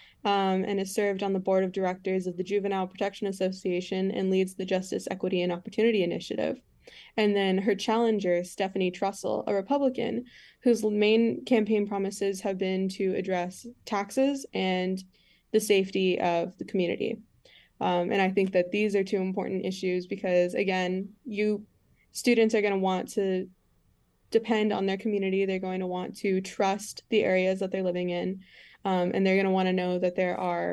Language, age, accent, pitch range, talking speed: English, 20-39, American, 185-205 Hz, 175 wpm